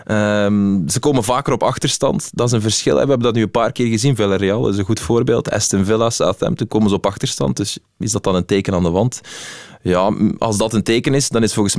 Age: 20-39